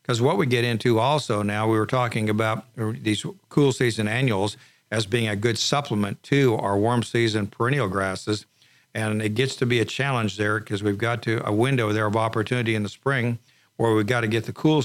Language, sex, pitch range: English, male, 105-120 Hz